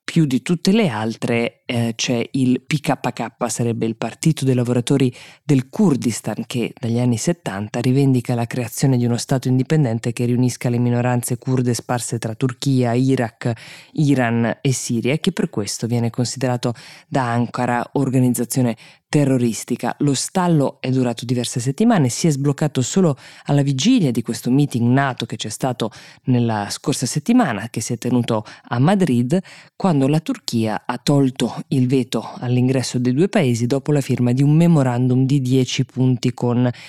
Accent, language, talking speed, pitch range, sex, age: native, Italian, 160 wpm, 120-145 Hz, female, 20-39